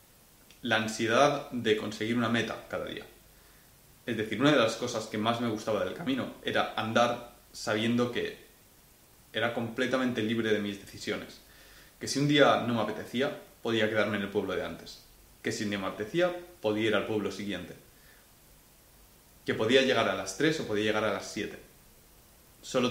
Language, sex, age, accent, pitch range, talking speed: Spanish, male, 20-39, Spanish, 105-130 Hz, 180 wpm